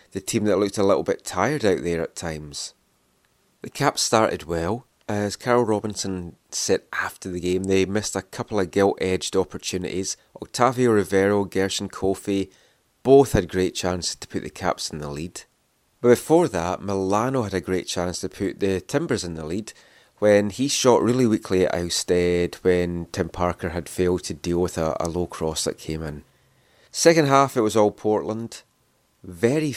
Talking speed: 180 wpm